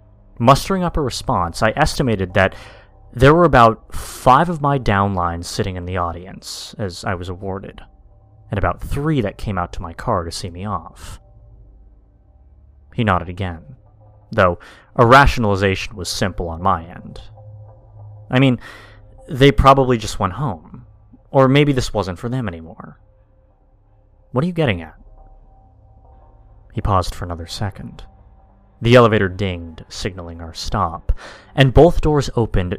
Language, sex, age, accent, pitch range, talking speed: English, male, 30-49, American, 95-115 Hz, 145 wpm